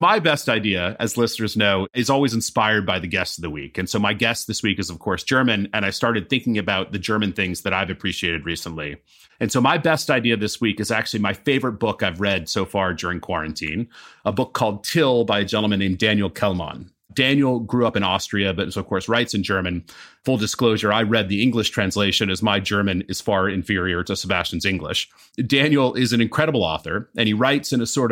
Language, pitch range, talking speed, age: English, 95-115 Hz, 220 wpm, 30-49